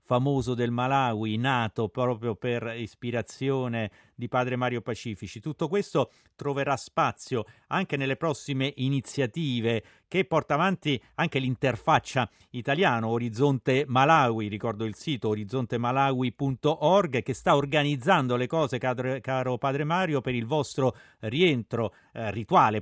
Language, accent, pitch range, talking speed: Italian, native, 115-145 Hz, 120 wpm